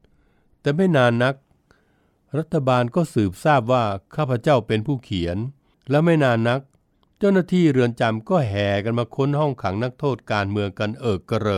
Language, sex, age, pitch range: Thai, male, 60-79, 105-140 Hz